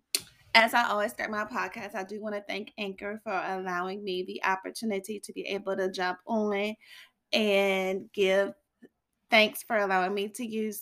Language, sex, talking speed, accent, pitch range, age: English, female, 170 wpm, American, 190-225 Hz, 30-49